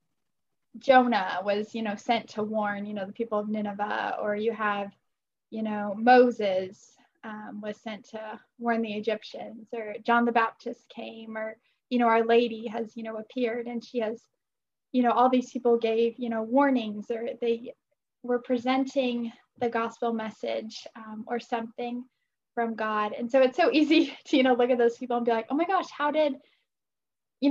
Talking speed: 185 wpm